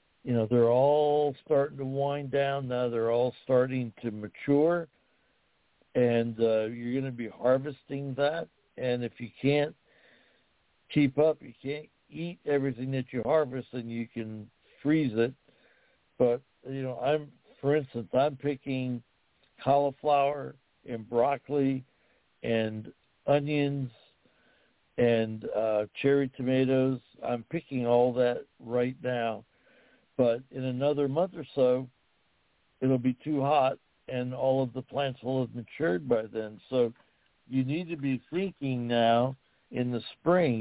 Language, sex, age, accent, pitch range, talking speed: English, male, 60-79, American, 120-140 Hz, 135 wpm